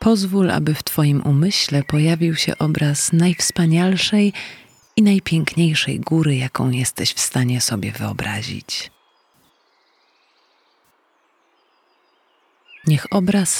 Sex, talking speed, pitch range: female, 90 wpm, 130-195 Hz